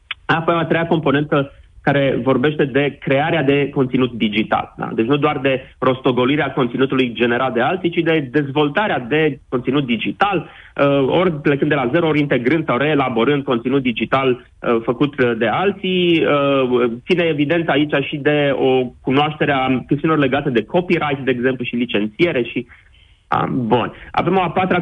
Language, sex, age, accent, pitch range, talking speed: Romanian, male, 30-49, native, 130-155 Hz, 150 wpm